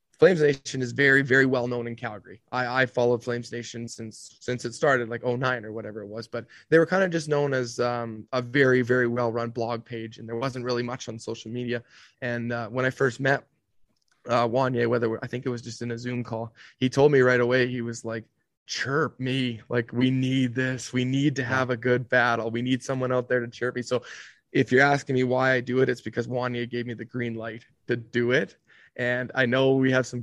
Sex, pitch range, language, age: male, 120-130 Hz, English, 20-39